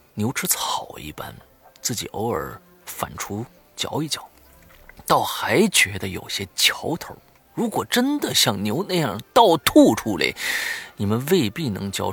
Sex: male